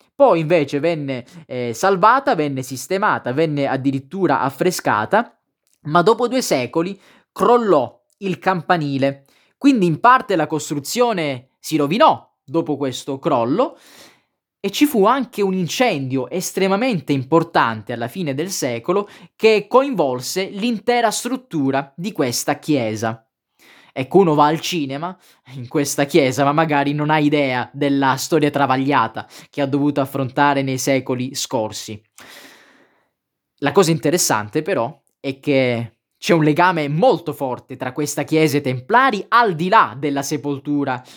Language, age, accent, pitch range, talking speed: Italian, 20-39, native, 130-180 Hz, 135 wpm